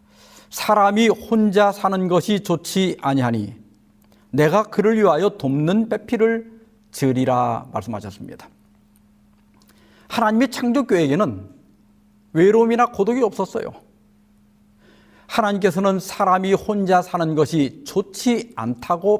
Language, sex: Korean, male